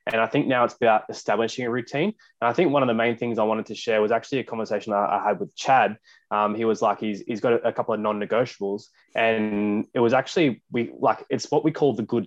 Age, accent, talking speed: 20-39, Australian, 260 wpm